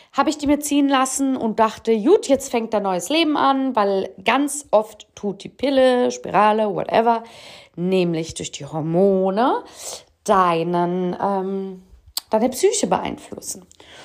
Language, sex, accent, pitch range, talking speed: German, female, German, 185-260 Hz, 130 wpm